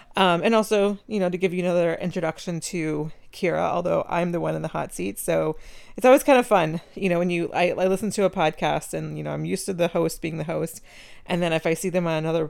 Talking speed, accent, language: 265 wpm, American, English